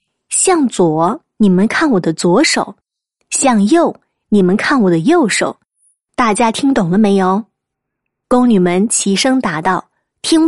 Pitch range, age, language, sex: 190-270 Hz, 20-39, Chinese, female